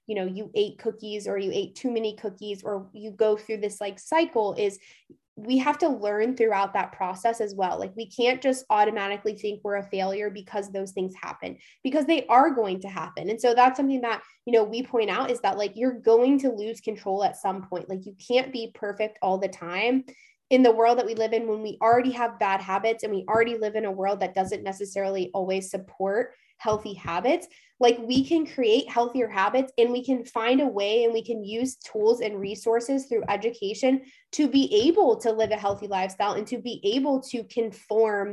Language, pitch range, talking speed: English, 200-240 Hz, 215 wpm